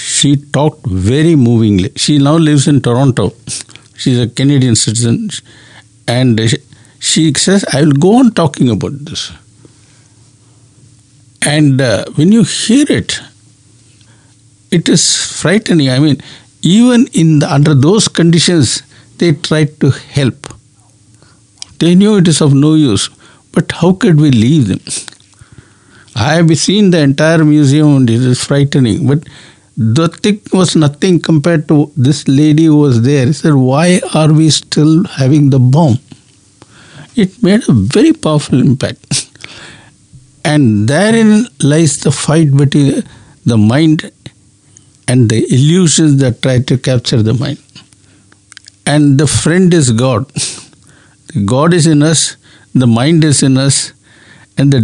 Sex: male